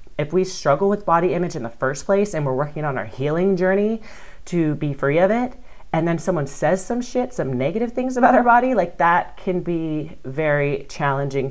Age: 30-49